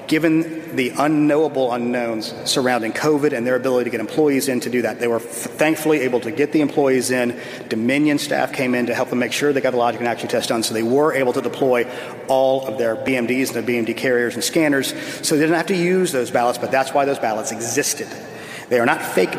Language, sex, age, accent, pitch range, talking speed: English, male, 40-59, American, 120-150 Hz, 235 wpm